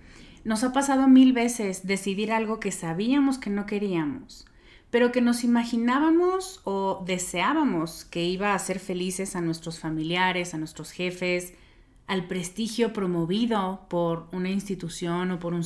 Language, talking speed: Spanish, 145 wpm